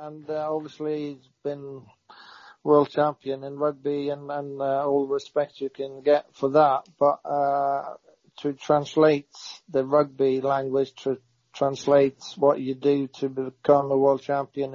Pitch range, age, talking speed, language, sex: 135-150 Hz, 50-69, 150 wpm, English, male